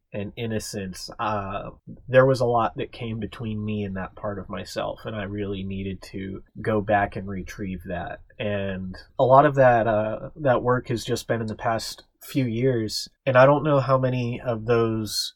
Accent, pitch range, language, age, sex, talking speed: American, 105-125 Hz, English, 30-49, male, 195 wpm